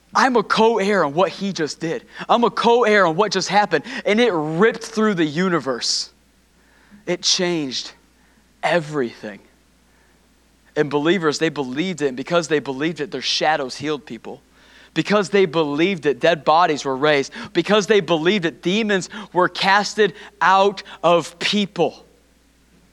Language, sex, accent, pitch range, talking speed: English, male, American, 150-195 Hz, 145 wpm